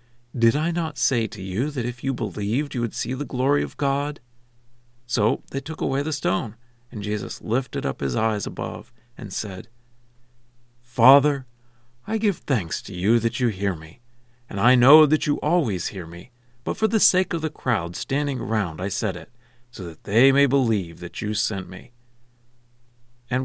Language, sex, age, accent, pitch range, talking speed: English, male, 50-69, American, 110-135 Hz, 185 wpm